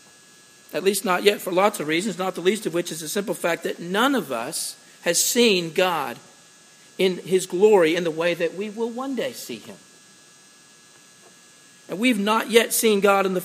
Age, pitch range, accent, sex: 50-69, 170-215 Hz, American, male